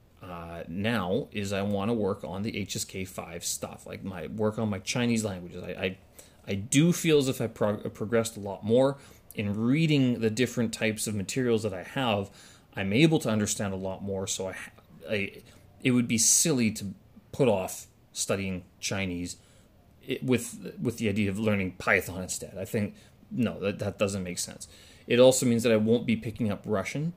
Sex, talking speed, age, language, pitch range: male, 190 wpm, 30-49, English, 100-120 Hz